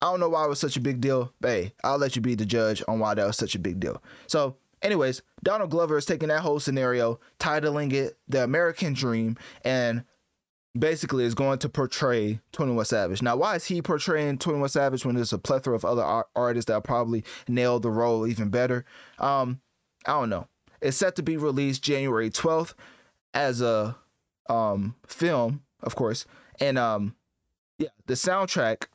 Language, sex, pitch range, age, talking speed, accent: English, male, 115-140 Hz, 20-39, 190 wpm, American